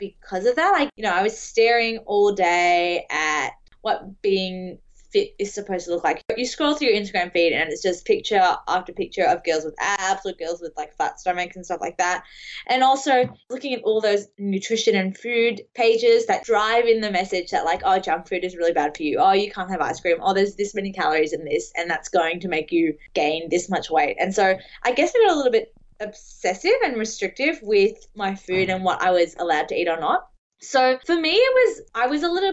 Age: 20-39